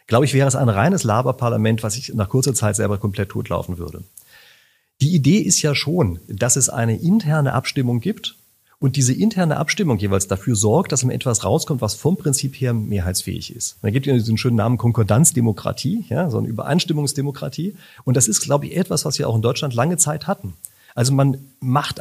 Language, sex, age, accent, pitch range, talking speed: German, male, 40-59, German, 115-150 Hz, 200 wpm